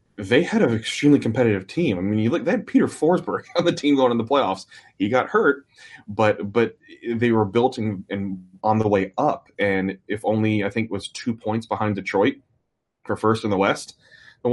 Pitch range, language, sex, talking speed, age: 95-110 Hz, English, male, 205 wpm, 20-39